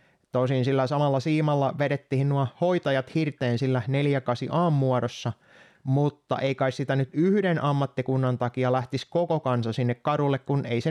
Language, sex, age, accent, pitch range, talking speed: Finnish, male, 20-39, native, 125-150 Hz, 130 wpm